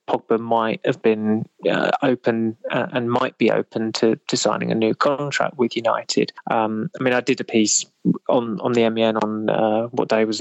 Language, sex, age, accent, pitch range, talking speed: English, male, 20-39, British, 110-125 Hz, 200 wpm